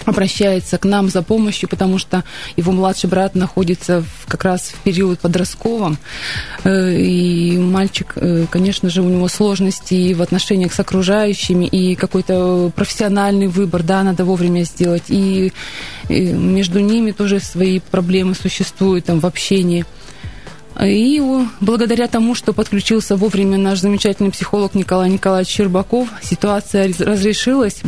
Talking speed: 125 wpm